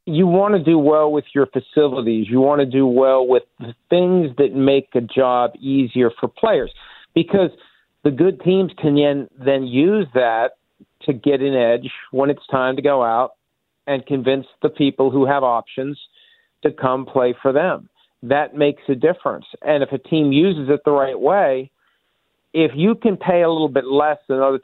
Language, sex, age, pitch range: English, male, 50-69, 130-160 Hz